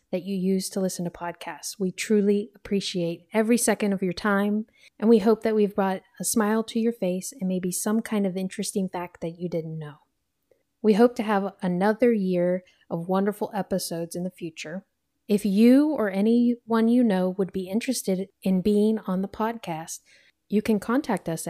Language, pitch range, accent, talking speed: English, 185-225 Hz, American, 185 wpm